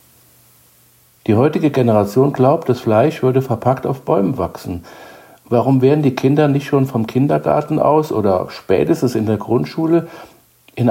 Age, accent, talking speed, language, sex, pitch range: 60-79, German, 145 wpm, German, male, 95-130 Hz